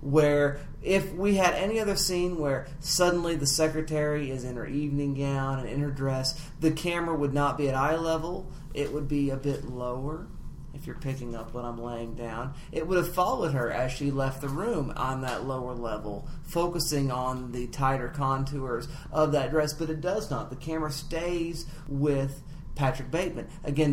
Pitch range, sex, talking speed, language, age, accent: 135-155 Hz, male, 190 wpm, English, 40-59, American